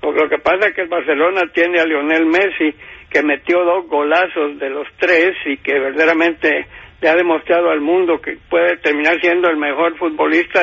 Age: 60-79